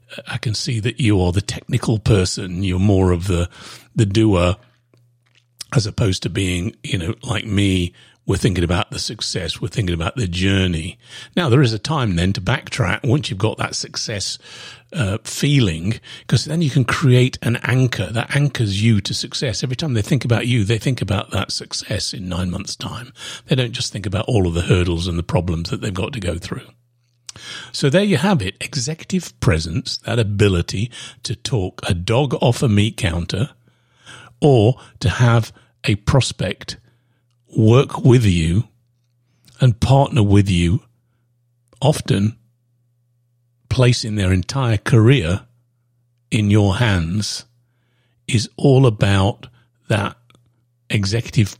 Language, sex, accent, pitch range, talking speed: English, male, British, 105-125 Hz, 155 wpm